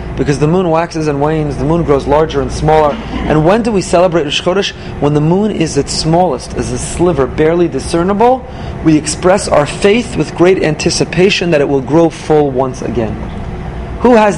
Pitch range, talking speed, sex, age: 145-190 Hz, 190 wpm, male, 30-49